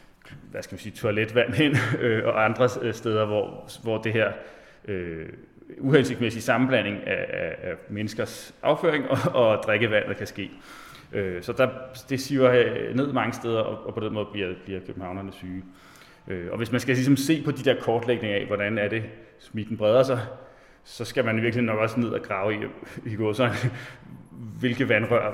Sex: male